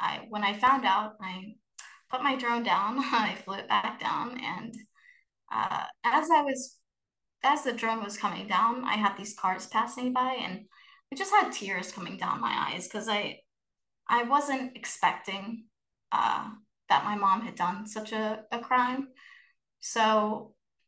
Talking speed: 165 wpm